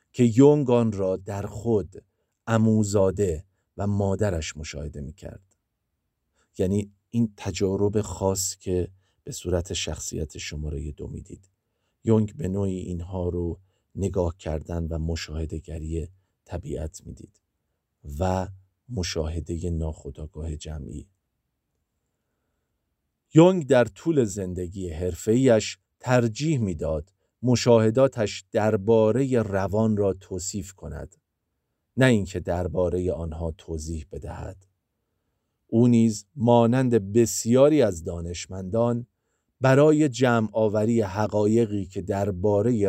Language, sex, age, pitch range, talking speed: Persian, male, 50-69, 85-110 Hz, 95 wpm